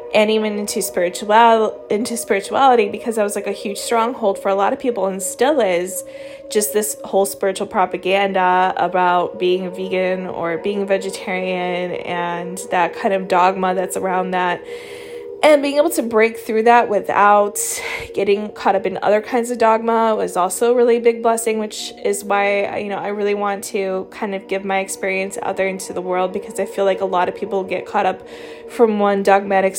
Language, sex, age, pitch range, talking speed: English, female, 20-39, 185-230 Hz, 195 wpm